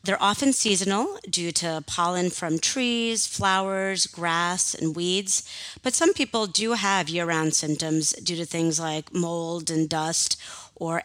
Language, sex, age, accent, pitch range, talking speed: English, female, 30-49, American, 170-215 Hz, 145 wpm